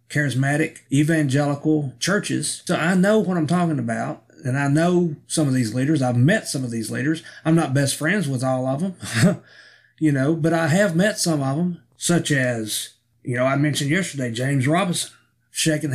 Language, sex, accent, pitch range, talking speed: English, male, American, 130-170 Hz, 190 wpm